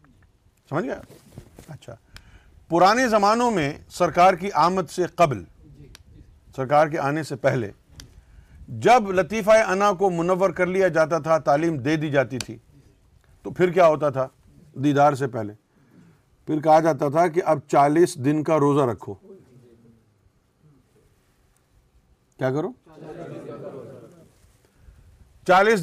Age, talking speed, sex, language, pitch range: 50-69, 115 wpm, male, Urdu, 115-185 Hz